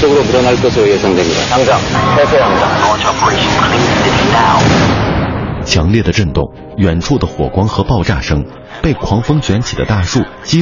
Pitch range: 80-115 Hz